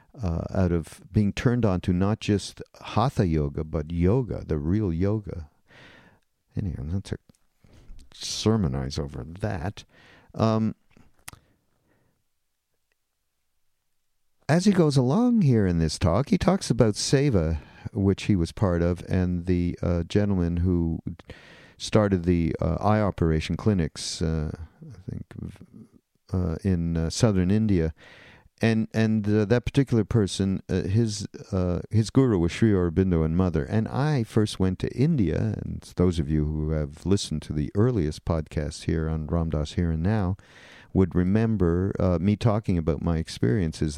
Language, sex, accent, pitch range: English, male, American, 80-105 Hz